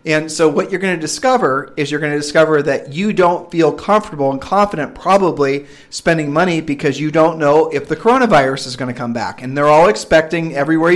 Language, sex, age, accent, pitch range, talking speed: English, male, 40-59, American, 135-160 Hz, 215 wpm